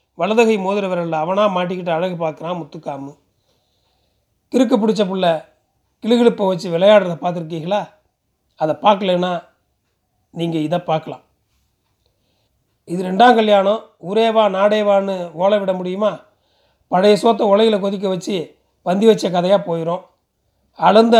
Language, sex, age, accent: Tamil, male, 40-59, native